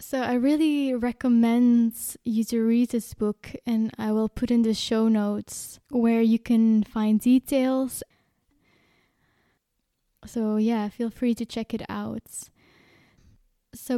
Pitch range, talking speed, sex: 215-235 Hz, 135 wpm, female